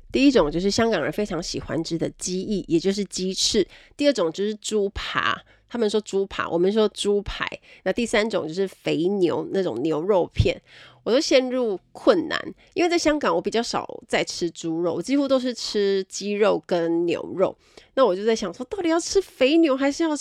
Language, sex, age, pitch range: Chinese, female, 30-49, 175-230 Hz